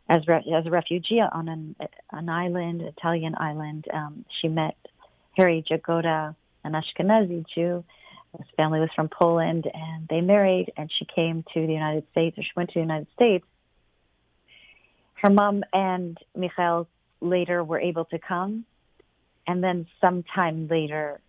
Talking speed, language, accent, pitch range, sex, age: 155 wpm, English, American, 155-175 Hz, female, 40-59